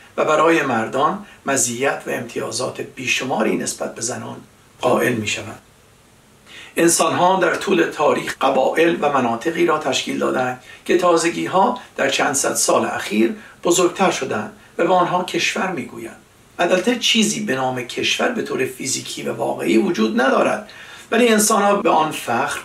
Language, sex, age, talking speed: Persian, male, 60-79, 140 wpm